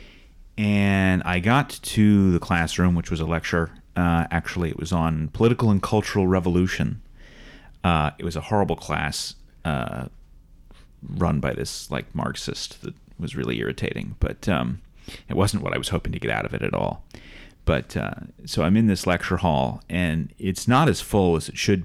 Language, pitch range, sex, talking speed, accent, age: English, 80-95 Hz, male, 180 wpm, American, 30-49